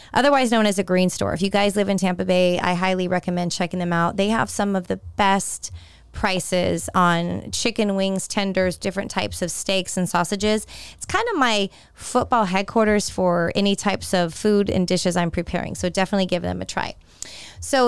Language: English